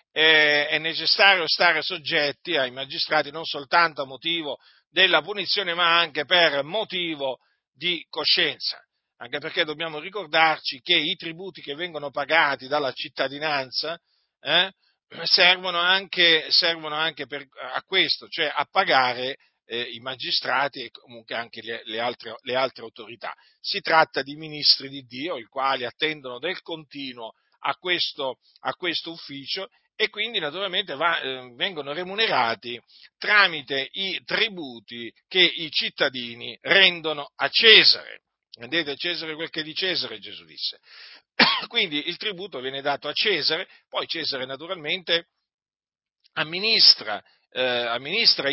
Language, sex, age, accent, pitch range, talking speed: Italian, male, 50-69, native, 130-175 Hz, 125 wpm